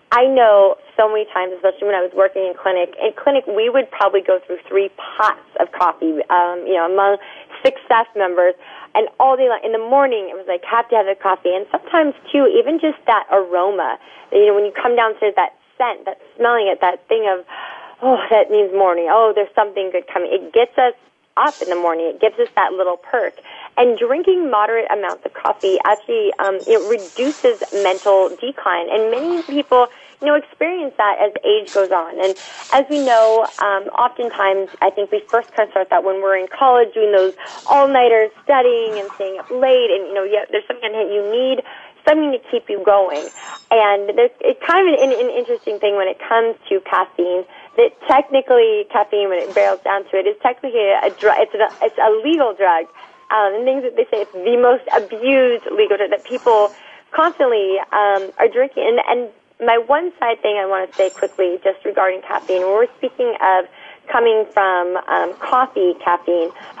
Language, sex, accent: English, female, American